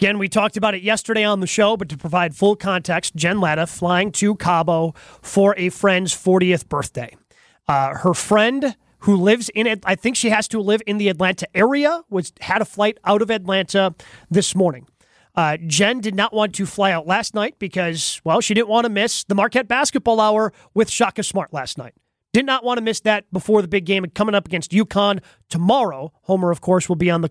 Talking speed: 215 wpm